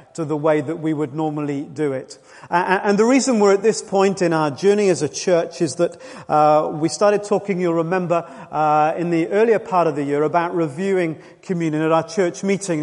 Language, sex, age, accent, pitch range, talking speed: English, male, 40-59, British, 165-200 Hz, 215 wpm